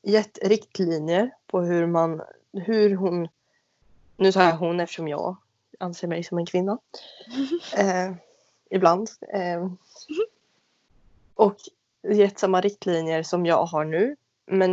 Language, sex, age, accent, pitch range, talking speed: Swedish, female, 20-39, native, 165-195 Hz, 120 wpm